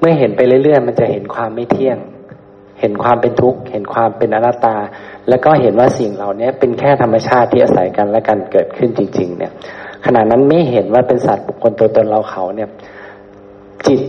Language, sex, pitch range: Thai, male, 105-130 Hz